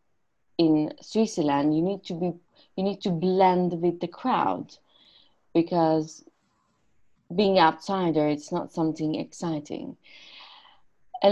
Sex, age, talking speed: female, 30-49, 105 wpm